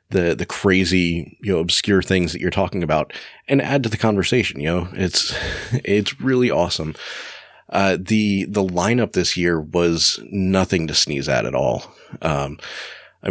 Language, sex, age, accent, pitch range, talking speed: English, male, 30-49, American, 85-105 Hz, 165 wpm